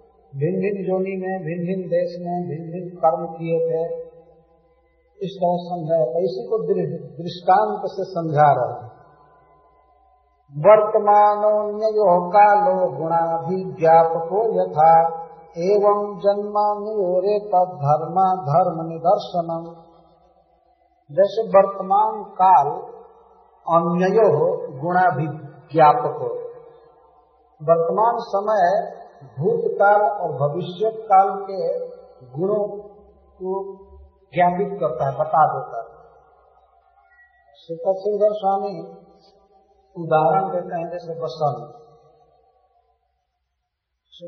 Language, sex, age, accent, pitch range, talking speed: Hindi, male, 50-69, native, 165-205 Hz, 70 wpm